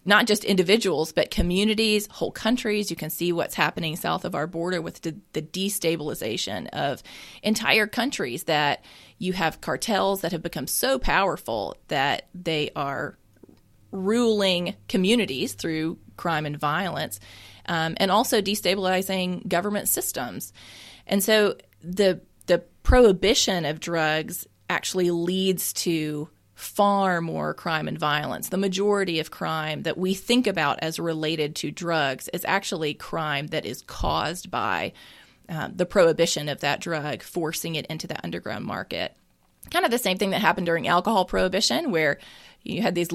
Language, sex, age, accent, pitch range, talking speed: English, female, 30-49, American, 165-200 Hz, 145 wpm